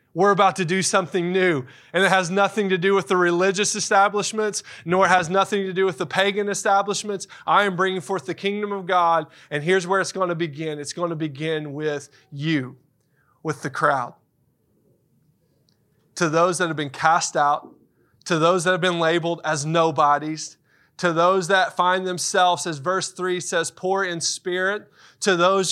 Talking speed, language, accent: 185 wpm, English, American